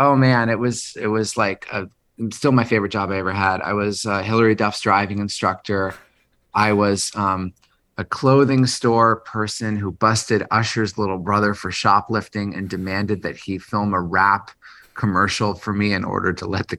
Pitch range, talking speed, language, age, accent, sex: 95-115 Hz, 180 wpm, English, 30-49, American, male